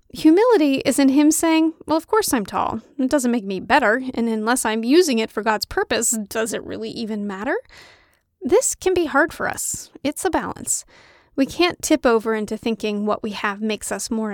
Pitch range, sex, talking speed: 225-310 Hz, female, 205 wpm